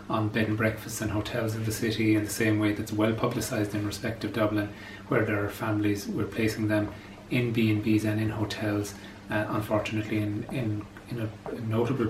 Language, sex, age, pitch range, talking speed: English, male, 30-49, 105-115 Hz, 195 wpm